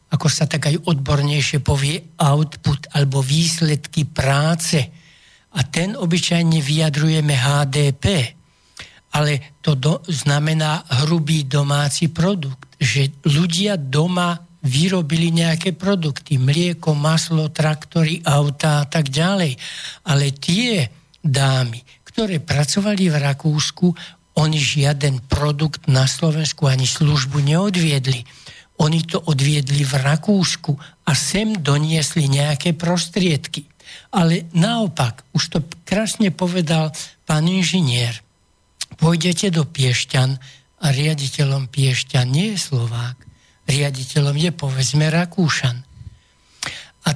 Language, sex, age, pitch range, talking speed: Slovak, male, 60-79, 140-170 Hz, 105 wpm